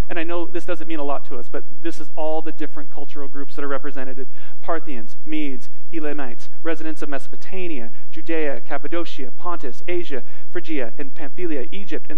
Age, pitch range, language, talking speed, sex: 40-59, 170-245 Hz, English, 175 wpm, male